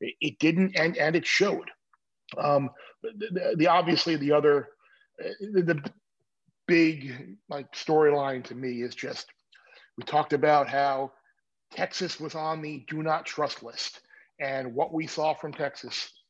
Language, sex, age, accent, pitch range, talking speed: English, male, 40-59, American, 140-170 Hz, 145 wpm